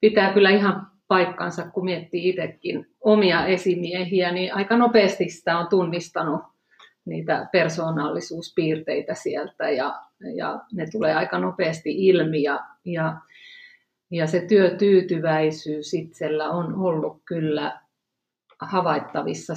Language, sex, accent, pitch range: Finnish, female, native, 160-205 Hz